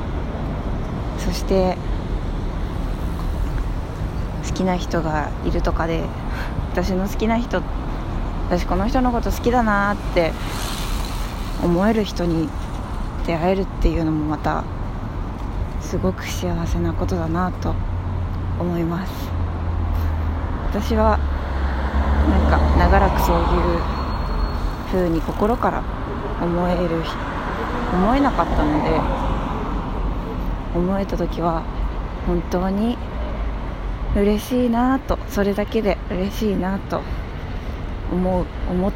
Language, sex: Japanese, female